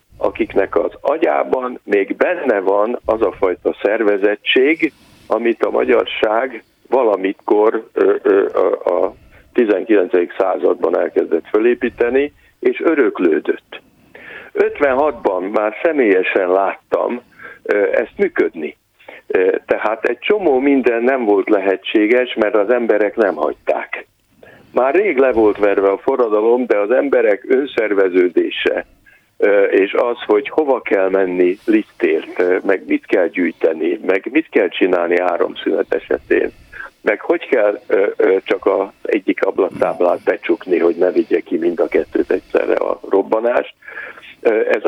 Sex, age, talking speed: male, 60-79, 115 wpm